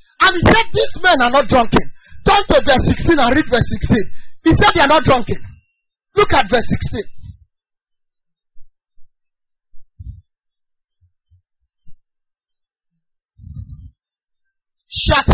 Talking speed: 105 wpm